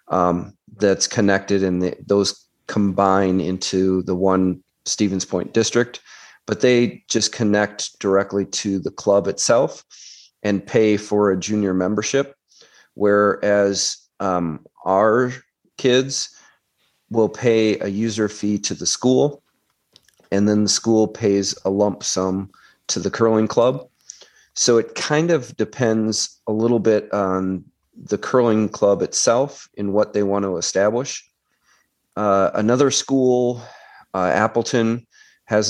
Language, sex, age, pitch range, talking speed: English, male, 40-59, 95-110 Hz, 130 wpm